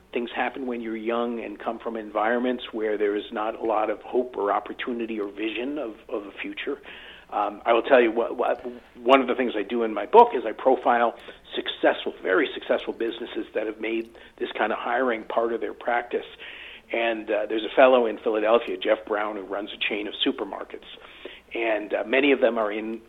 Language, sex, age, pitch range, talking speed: English, male, 50-69, 115-180 Hz, 210 wpm